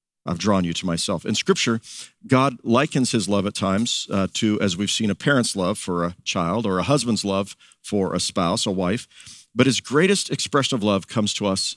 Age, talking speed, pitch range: 50-69, 215 wpm, 105-130 Hz